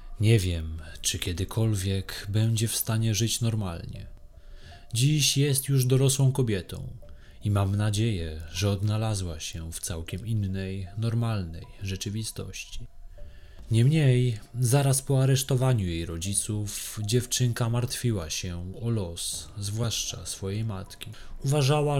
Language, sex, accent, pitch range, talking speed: Polish, male, native, 90-120 Hz, 110 wpm